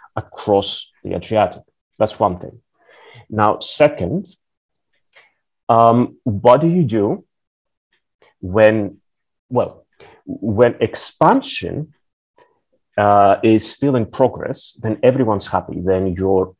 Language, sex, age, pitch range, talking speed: English, male, 30-49, 95-115 Hz, 100 wpm